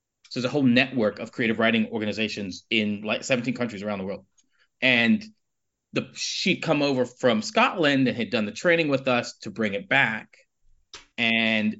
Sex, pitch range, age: male, 105-150 Hz, 30-49